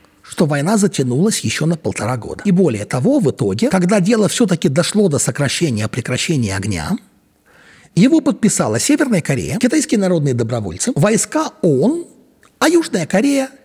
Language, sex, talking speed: Russian, male, 140 wpm